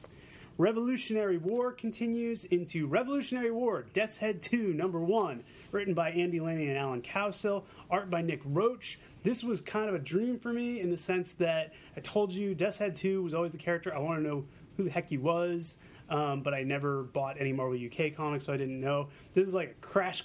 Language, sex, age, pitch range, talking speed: English, male, 30-49, 145-195 Hz, 210 wpm